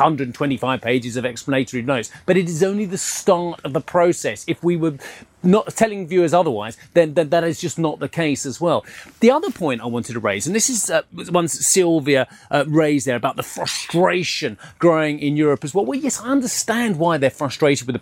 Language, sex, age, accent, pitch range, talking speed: English, male, 30-49, British, 135-180 Hz, 210 wpm